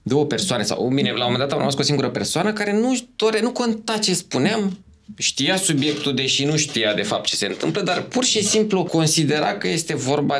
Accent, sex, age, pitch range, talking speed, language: native, male, 20-39, 135-190 Hz, 220 wpm, Romanian